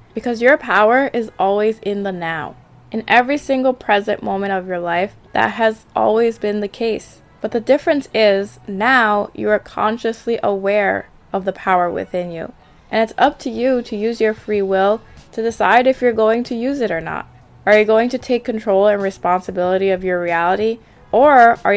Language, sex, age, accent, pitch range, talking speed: English, female, 20-39, American, 195-230 Hz, 190 wpm